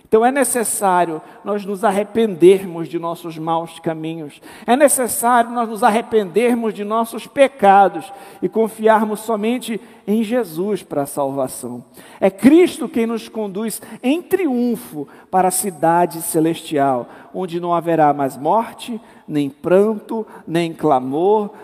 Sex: male